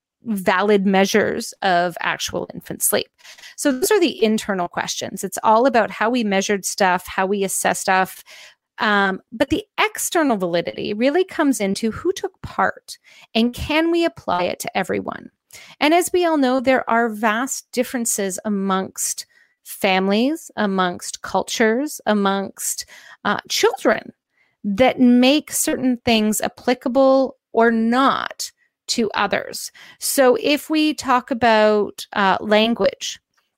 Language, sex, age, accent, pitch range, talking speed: English, female, 30-49, American, 215-285 Hz, 130 wpm